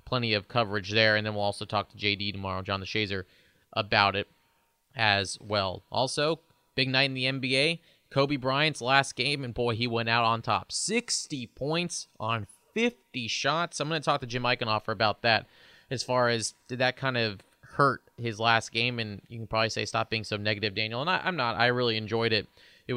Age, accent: 30-49, American